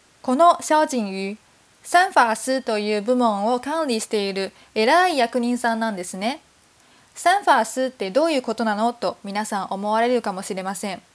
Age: 20-39